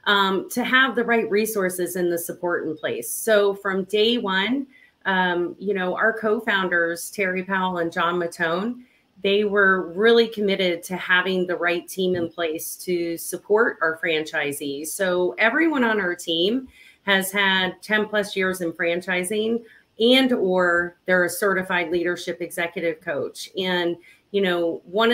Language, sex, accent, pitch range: English, female, American, 175-220 Hz